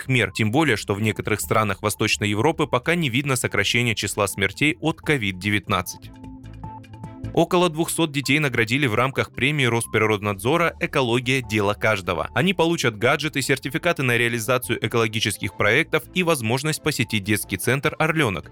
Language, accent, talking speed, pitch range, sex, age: Russian, native, 140 wpm, 105-150 Hz, male, 20-39